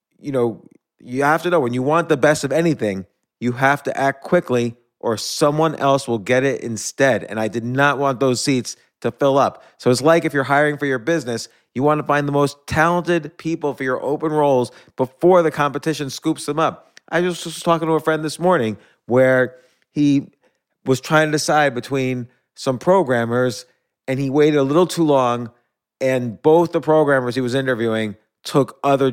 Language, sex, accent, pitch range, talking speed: English, male, American, 120-150 Hz, 200 wpm